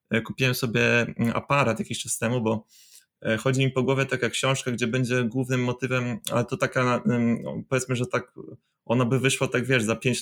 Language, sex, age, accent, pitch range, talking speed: Polish, male, 20-39, native, 115-130 Hz, 180 wpm